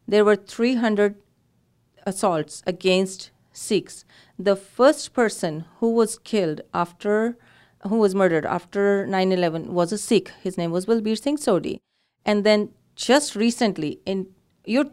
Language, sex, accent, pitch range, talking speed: English, female, Indian, 175-225 Hz, 135 wpm